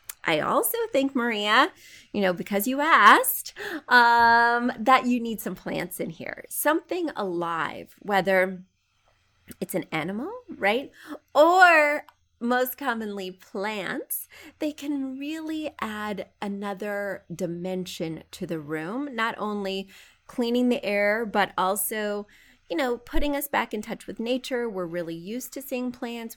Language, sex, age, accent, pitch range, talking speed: English, female, 30-49, American, 185-255 Hz, 135 wpm